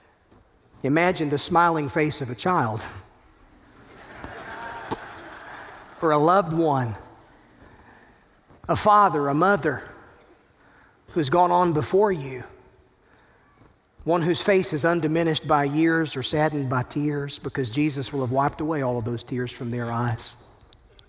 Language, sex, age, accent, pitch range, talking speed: English, male, 40-59, American, 120-160 Hz, 125 wpm